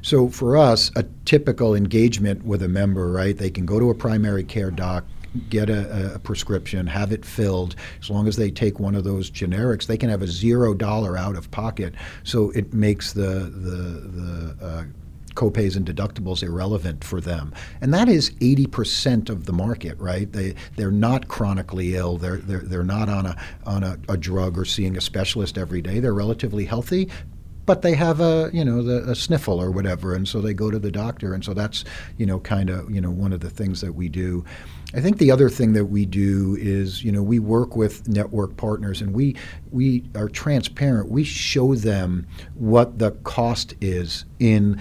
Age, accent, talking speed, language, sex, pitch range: 50-69, American, 200 wpm, English, male, 90-110 Hz